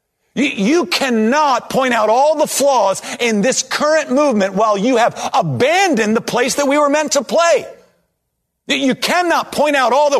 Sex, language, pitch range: male, English, 165-270 Hz